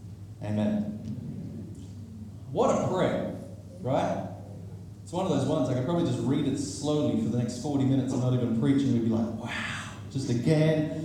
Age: 30-49